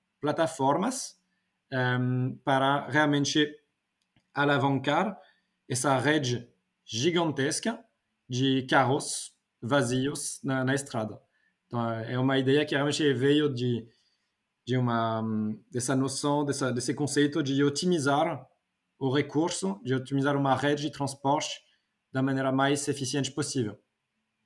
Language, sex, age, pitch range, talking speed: Portuguese, male, 20-39, 120-150 Hz, 110 wpm